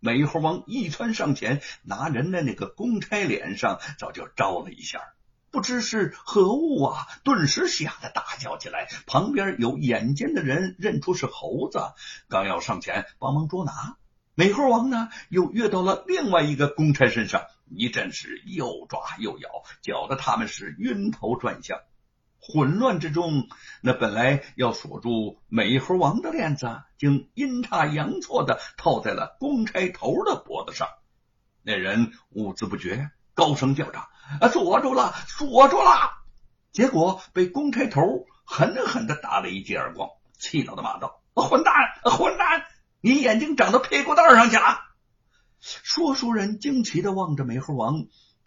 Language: Chinese